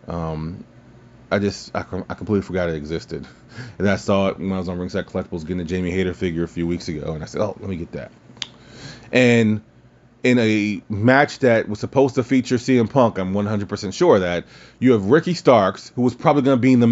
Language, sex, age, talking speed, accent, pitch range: English, male, 30-49, 225 wpm, American, 95-125 Hz